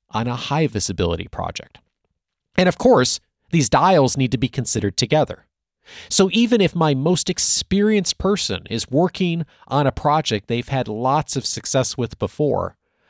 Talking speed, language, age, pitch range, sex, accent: 155 wpm, English, 40-59, 115-175 Hz, male, American